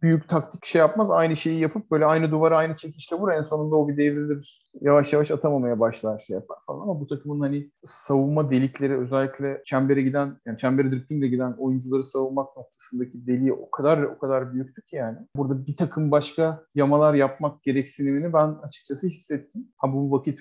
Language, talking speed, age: Turkish, 185 wpm, 40-59